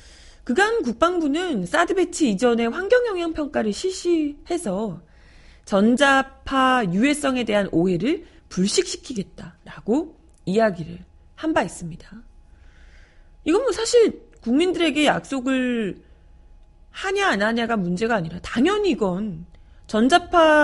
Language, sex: Korean, female